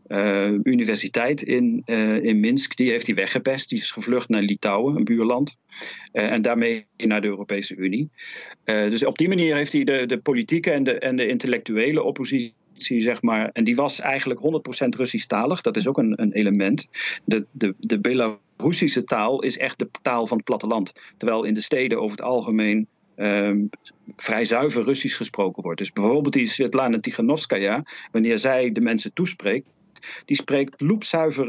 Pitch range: 115-160 Hz